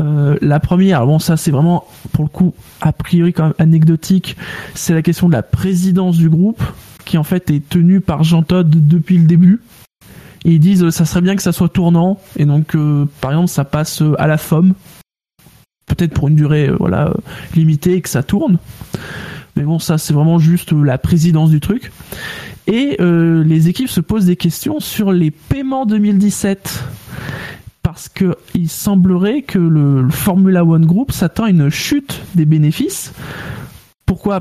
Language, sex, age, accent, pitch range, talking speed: French, male, 20-39, French, 155-185 Hz, 180 wpm